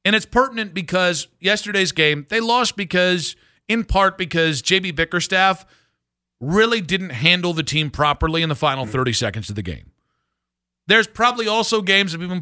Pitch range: 135-200 Hz